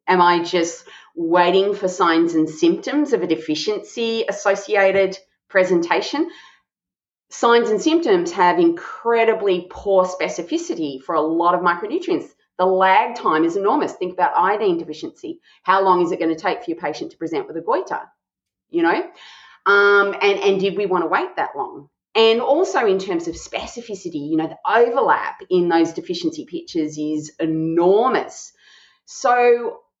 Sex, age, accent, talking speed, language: female, 30-49, Australian, 155 wpm, English